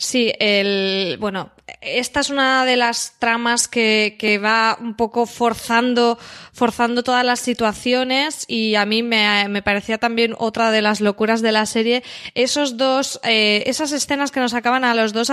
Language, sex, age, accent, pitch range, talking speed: Spanish, female, 20-39, Spanish, 220-260 Hz, 170 wpm